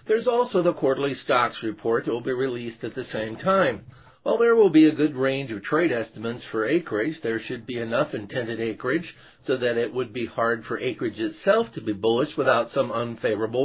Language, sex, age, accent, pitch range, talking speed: English, male, 50-69, American, 115-155 Hz, 205 wpm